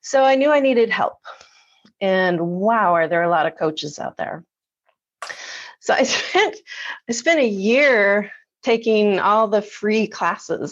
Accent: American